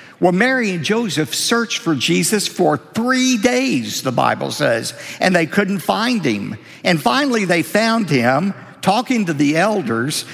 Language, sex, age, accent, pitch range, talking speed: English, male, 50-69, American, 165-220 Hz, 155 wpm